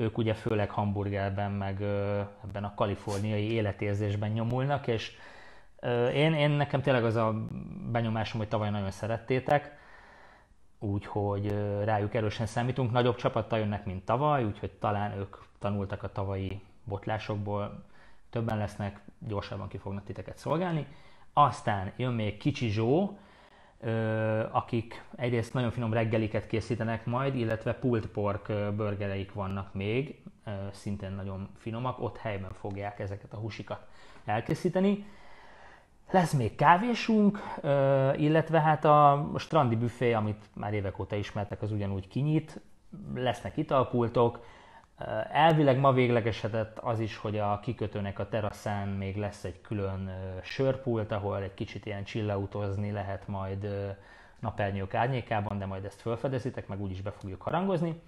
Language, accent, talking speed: English, Finnish, 130 wpm